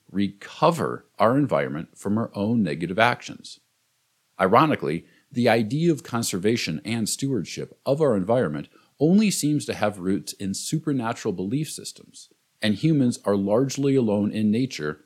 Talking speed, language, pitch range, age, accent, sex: 135 wpm, English, 95-135 Hz, 50-69, American, male